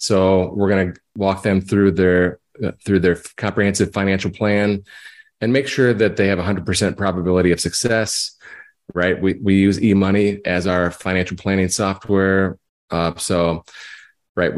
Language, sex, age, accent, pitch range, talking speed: English, male, 30-49, American, 90-105 Hz, 150 wpm